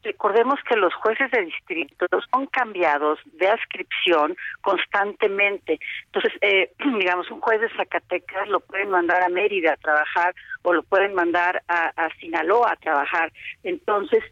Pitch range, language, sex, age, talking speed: 170-265 Hz, Spanish, female, 50-69, 145 wpm